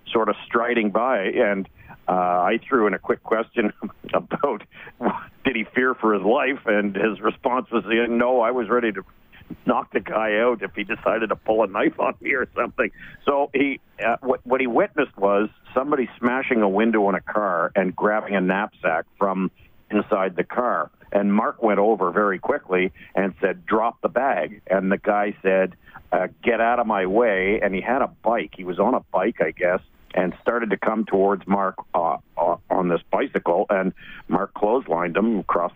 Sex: male